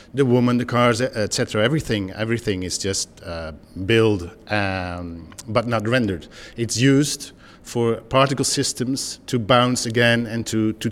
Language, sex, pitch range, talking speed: English, male, 105-120 Hz, 145 wpm